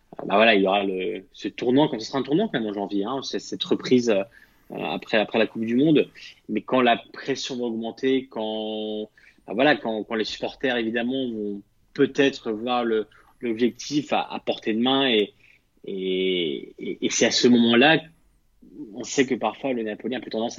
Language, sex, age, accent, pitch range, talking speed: French, male, 20-39, French, 105-125 Hz, 195 wpm